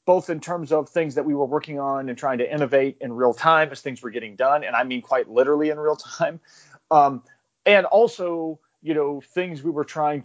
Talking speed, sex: 230 wpm, male